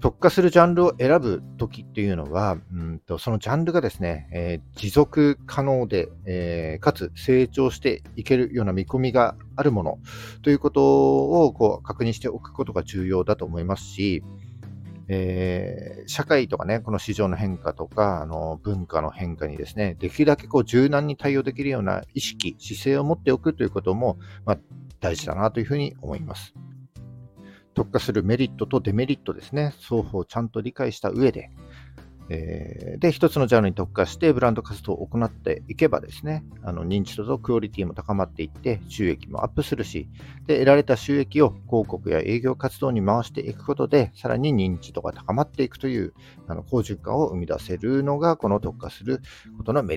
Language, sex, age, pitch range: Japanese, male, 50-69, 95-130 Hz